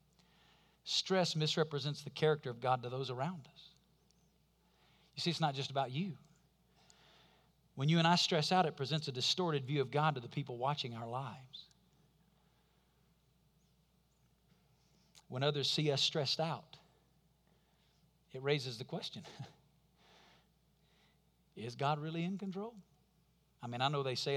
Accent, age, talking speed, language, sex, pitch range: American, 50-69, 140 wpm, English, male, 145-180 Hz